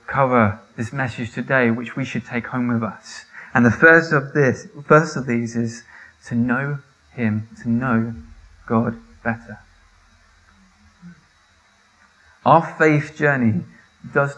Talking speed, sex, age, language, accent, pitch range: 130 wpm, male, 20-39, English, British, 115-135 Hz